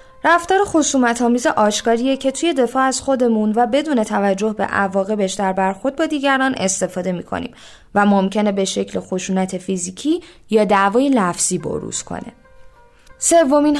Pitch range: 195-275 Hz